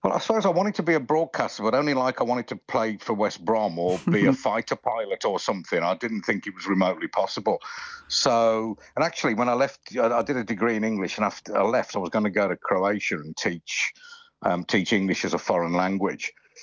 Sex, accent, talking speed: male, British, 235 wpm